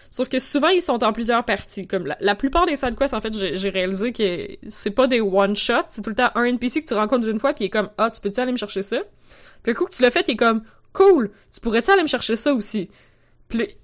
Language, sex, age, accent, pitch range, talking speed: French, female, 20-39, Canadian, 200-265 Hz, 290 wpm